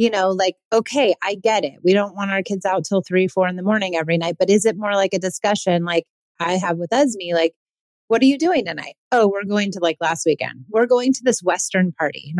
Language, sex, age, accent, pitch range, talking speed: English, female, 30-49, American, 190-250 Hz, 255 wpm